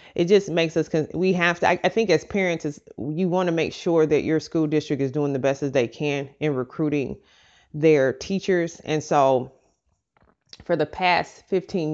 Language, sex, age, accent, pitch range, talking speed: English, female, 30-49, American, 145-170 Hz, 185 wpm